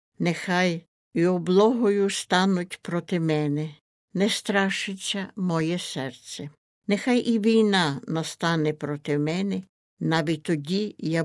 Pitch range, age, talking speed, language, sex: 160-195 Hz, 60-79, 100 wpm, Ukrainian, female